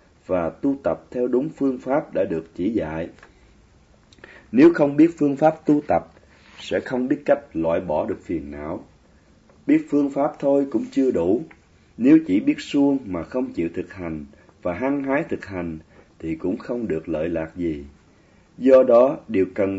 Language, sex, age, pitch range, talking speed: Vietnamese, male, 30-49, 85-140 Hz, 180 wpm